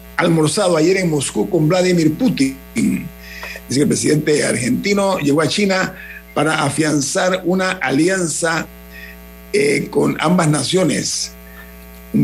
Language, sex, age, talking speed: Spanish, male, 50-69, 120 wpm